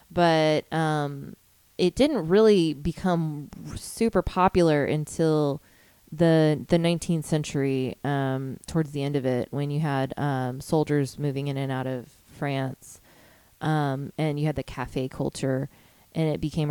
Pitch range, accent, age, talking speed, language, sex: 135-160 Hz, American, 20-39, 145 wpm, English, female